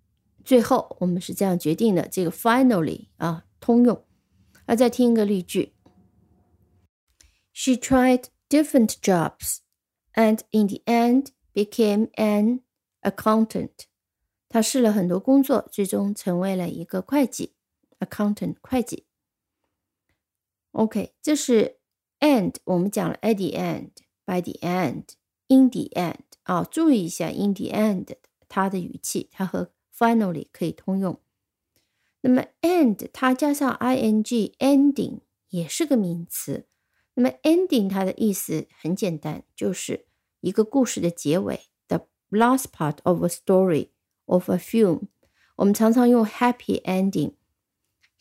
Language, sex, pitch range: Chinese, female, 180-250 Hz